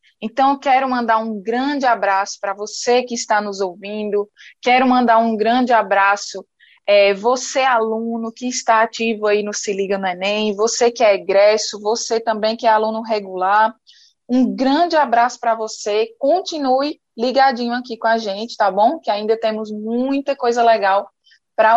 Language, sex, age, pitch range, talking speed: Portuguese, female, 20-39, 215-255 Hz, 160 wpm